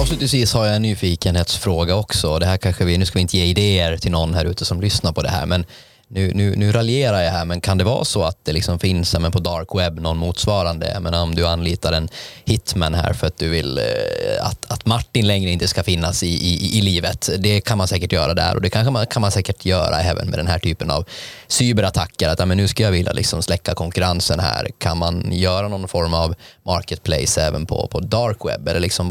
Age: 20-39